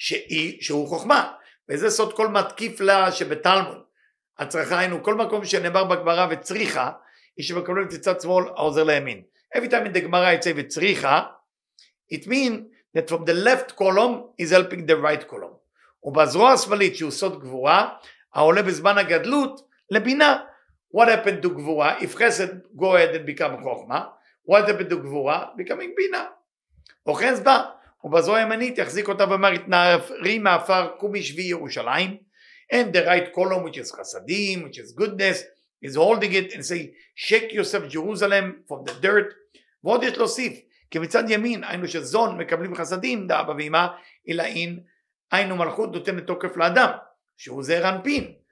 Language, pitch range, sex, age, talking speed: English, 170-220 Hz, male, 50-69, 140 wpm